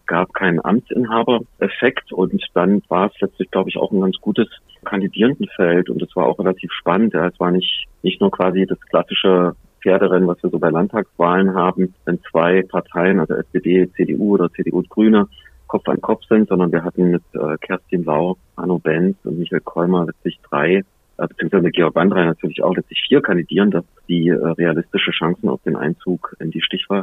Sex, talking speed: male, 185 wpm